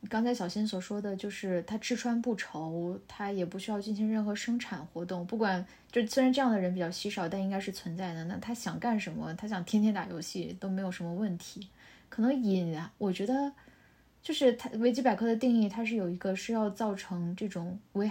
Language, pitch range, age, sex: Chinese, 185-225 Hz, 10-29, female